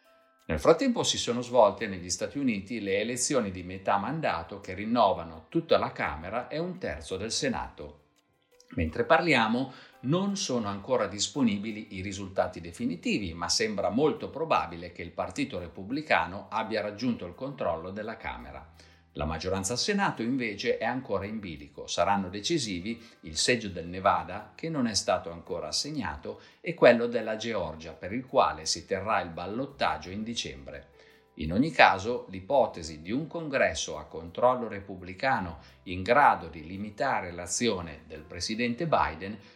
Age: 50-69